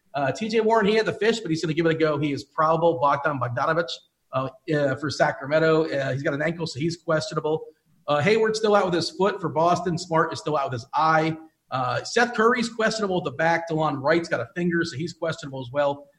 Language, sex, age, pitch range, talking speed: English, male, 40-59, 145-180 Hz, 240 wpm